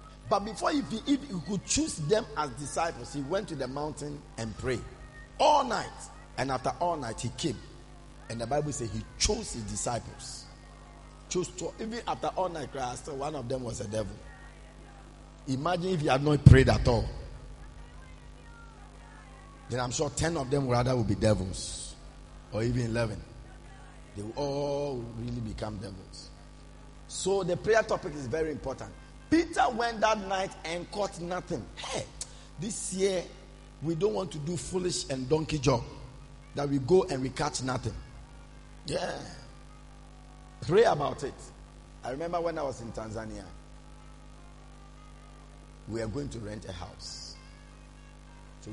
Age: 50-69